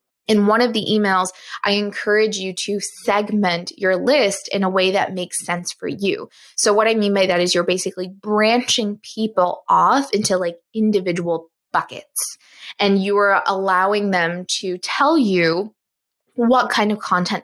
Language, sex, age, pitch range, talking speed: English, female, 20-39, 180-220 Hz, 160 wpm